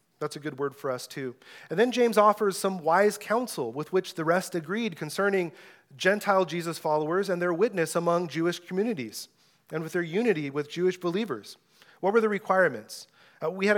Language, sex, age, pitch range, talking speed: English, male, 30-49, 150-190 Hz, 185 wpm